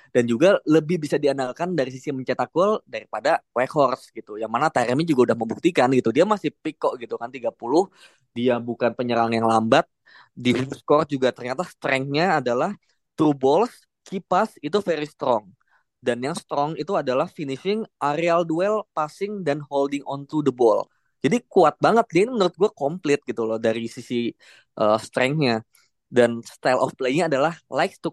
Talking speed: 170 wpm